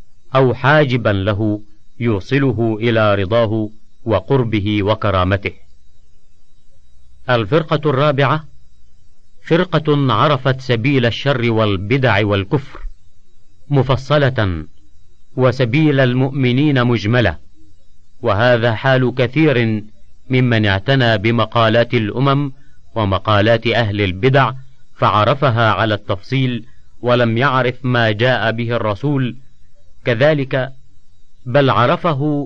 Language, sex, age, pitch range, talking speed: Arabic, male, 50-69, 100-130 Hz, 80 wpm